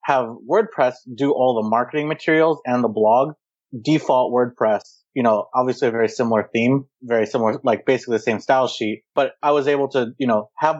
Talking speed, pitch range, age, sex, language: 195 wpm, 110-135 Hz, 30-49, male, English